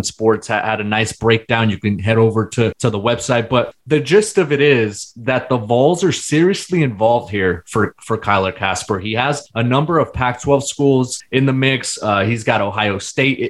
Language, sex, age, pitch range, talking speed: English, male, 20-39, 110-130 Hz, 200 wpm